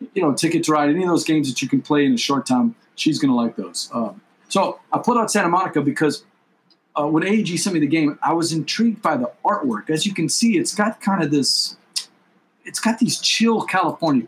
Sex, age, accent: male, 40-59, American